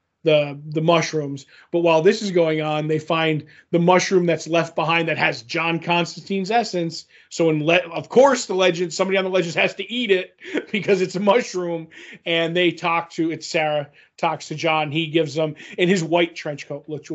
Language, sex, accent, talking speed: English, male, American, 205 wpm